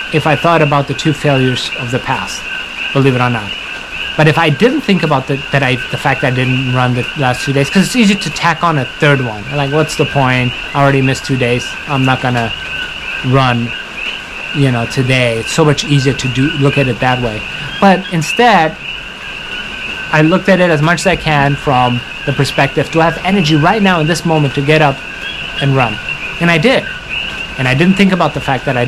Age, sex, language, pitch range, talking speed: 30-49, male, English, 125-160 Hz, 220 wpm